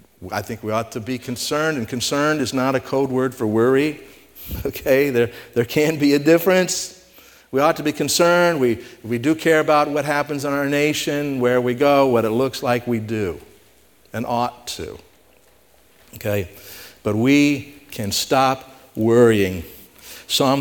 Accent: American